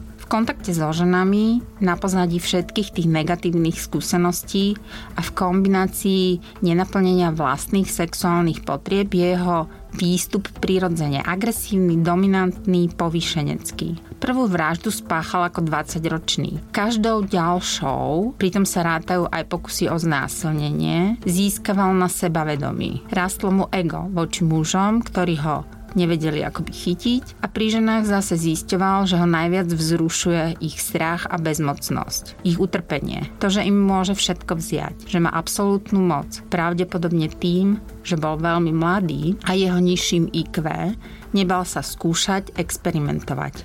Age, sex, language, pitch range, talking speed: 30-49, female, Slovak, 165-190 Hz, 125 wpm